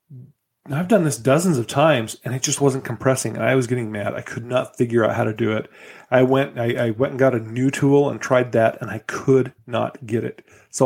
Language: English